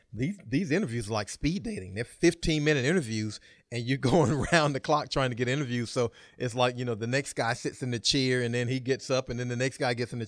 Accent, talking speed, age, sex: American, 265 wpm, 40-59, male